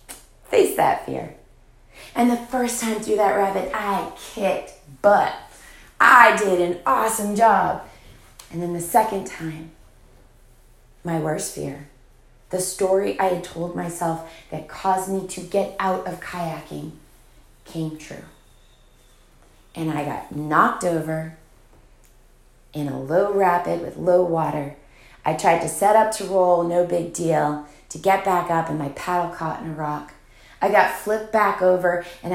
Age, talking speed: 30-49, 150 wpm